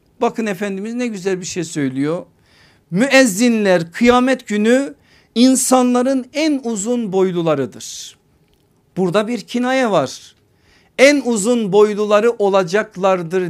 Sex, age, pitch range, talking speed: male, 50-69, 205-260 Hz, 100 wpm